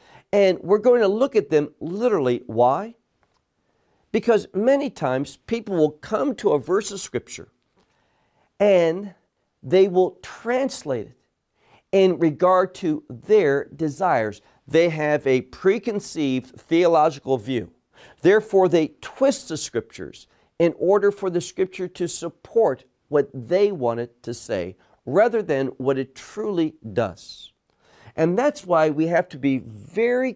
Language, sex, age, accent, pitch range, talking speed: English, male, 50-69, American, 130-200 Hz, 135 wpm